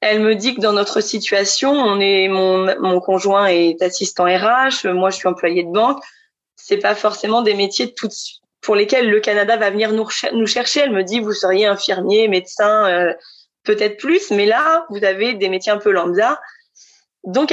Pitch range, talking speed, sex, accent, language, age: 200-270 Hz, 195 wpm, female, French, French, 20-39